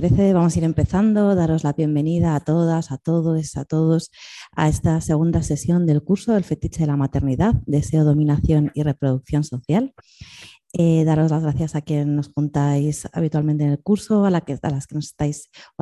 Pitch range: 150-165 Hz